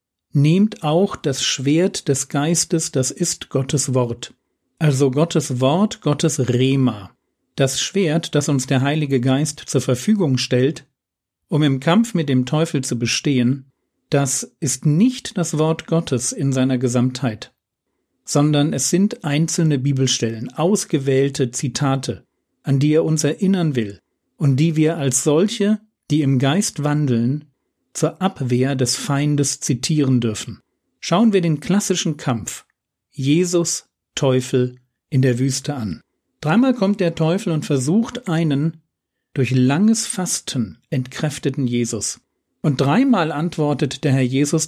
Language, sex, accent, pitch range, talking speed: German, male, German, 130-165 Hz, 135 wpm